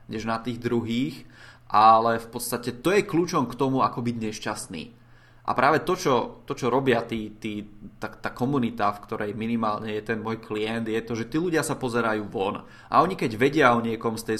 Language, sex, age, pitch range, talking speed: Czech, male, 20-39, 110-125 Hz, 195 wpm